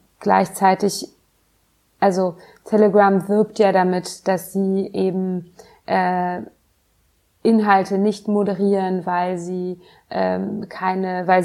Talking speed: 95 wpm